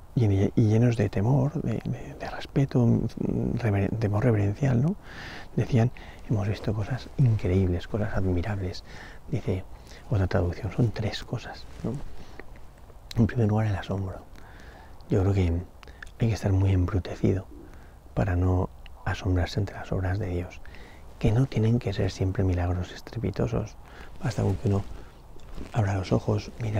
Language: Spanish